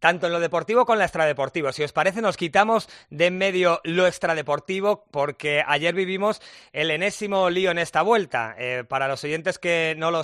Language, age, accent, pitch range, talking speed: Spanish, 30-49, Spanish, 150-185 Hz, 200 wpm